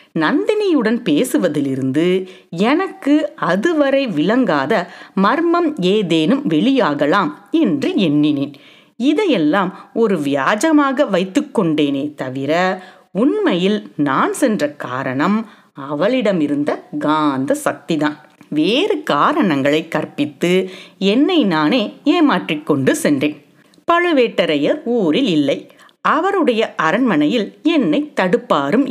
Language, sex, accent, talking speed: Tamil, female, native, 75 wpm